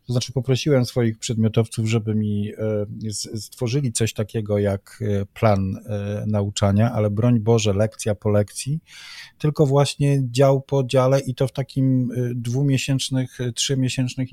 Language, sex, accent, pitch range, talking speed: Polish, male, native, 110-130 Hz, 125 wpm